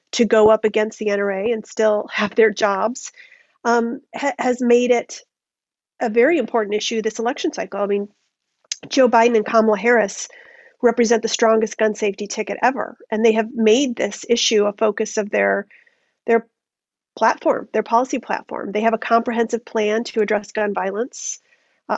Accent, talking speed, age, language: American, 165 wpm, 40-59, English